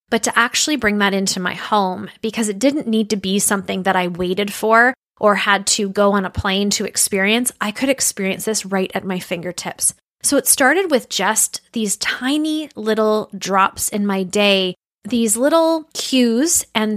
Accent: American